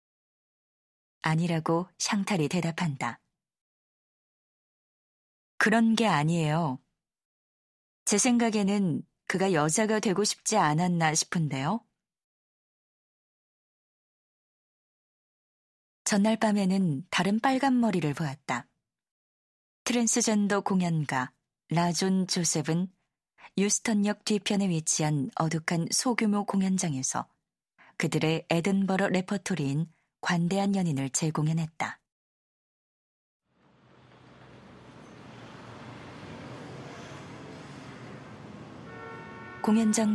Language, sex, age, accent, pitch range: Korean, female, 20-39, native, 160-205 Hz